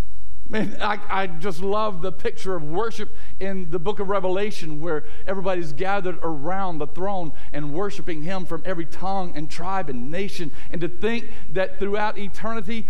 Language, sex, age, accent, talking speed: English, male, 50-69, American, 165 wpm